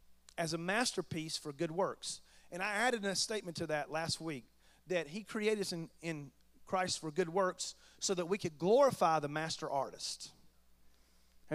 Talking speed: 170 wpm